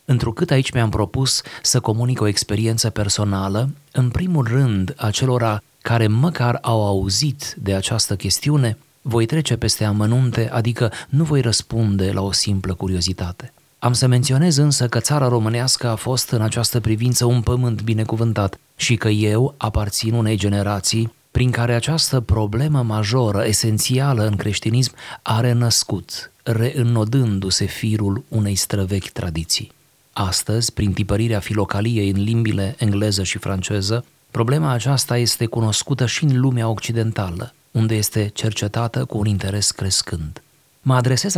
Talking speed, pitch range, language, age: 135 wpm, 105-125 Hz, Romanian, 30-49